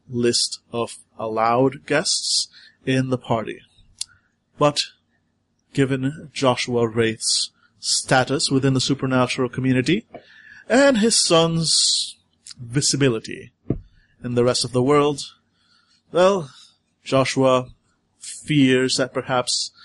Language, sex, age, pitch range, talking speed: English, male, 30-49, 115-135 Hz, 95 wpm